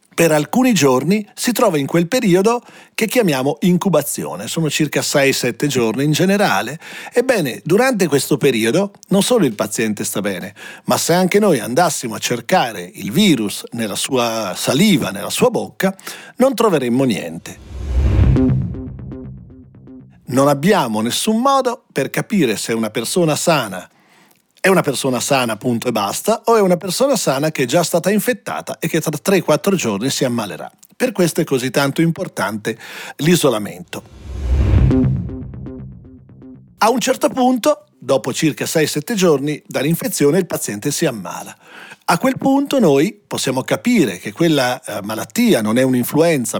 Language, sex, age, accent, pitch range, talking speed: Italian, male, 40-59, native, 130-200 Hz, 145 wpm